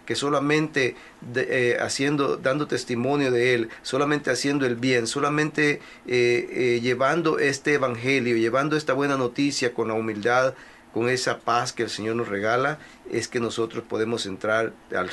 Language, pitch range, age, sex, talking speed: Spanish, 115-140 Hz, 40-59, male, 145 wpm